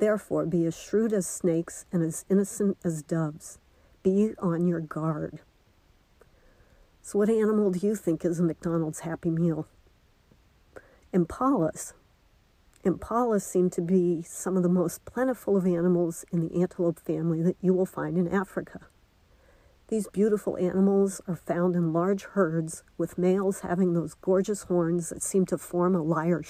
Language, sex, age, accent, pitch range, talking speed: English, female, 50-69, American, 165-190 Hz, 155 wpm